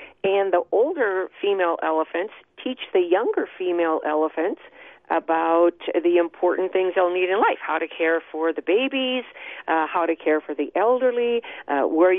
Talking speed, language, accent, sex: 160 wpm, English, American, female